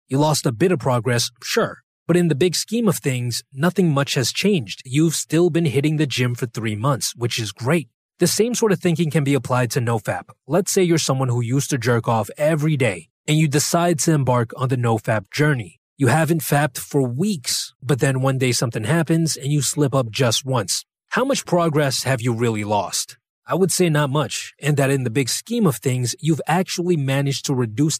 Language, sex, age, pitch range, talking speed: English, male, 30-49, 125-160 Hz, 220 wpm